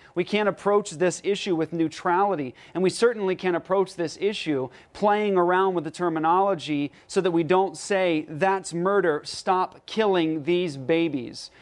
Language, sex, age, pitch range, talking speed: English, male, 30-49, 165-195 Hz, 155 wpm